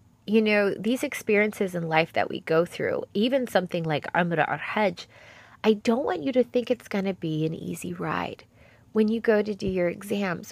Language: English